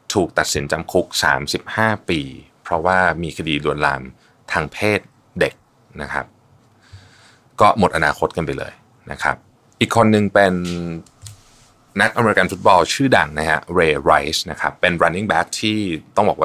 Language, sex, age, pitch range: Thai, male, 20-39, 80-110 Hz